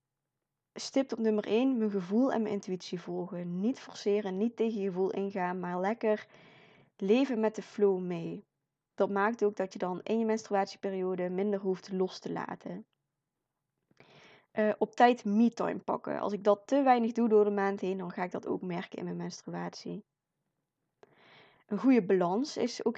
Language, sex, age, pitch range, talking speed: Dutch, female, 20-39, 180-215 Hz, 175 wpm